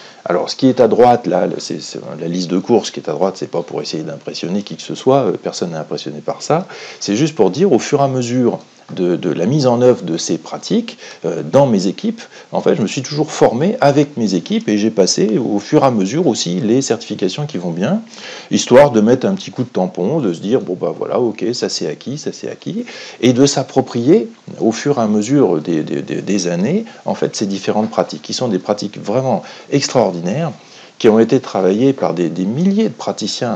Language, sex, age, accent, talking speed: French, male, 40-59, French, 240 wpm